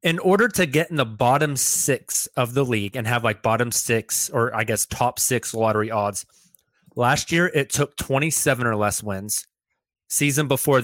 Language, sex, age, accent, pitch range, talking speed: English, male, 30-49, American, 115-150 Hz, 185 wpm